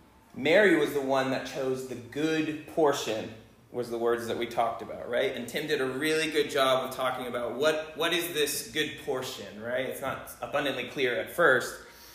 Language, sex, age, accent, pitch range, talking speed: English, male, 20-39, American, 120-160 Hz, 200 wpm